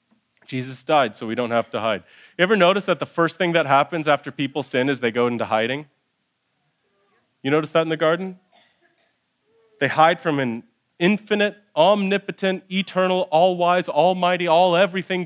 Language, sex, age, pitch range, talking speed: English, male, 30-49, 150-195 Hz, 160 wpm